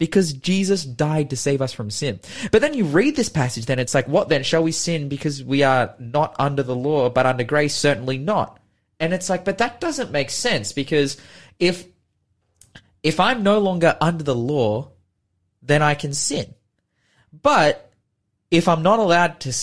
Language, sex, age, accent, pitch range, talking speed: English, male, 20-39, Australian, 115-155 Hz, 185 wpm